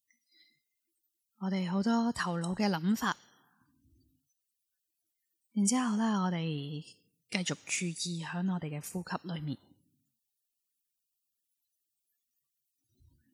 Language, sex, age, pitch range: Chinese, female, 20-39, 165-210 Hz